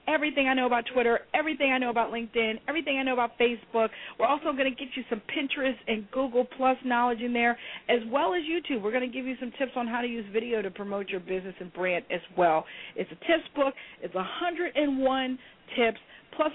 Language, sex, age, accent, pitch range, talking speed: English, female, 50-69, American, 200-255 Hz, 220 wpm